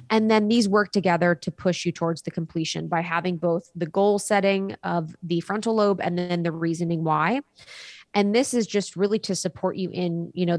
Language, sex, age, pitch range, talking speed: English, female, 20-39, 175-205 Hz, 210 wpm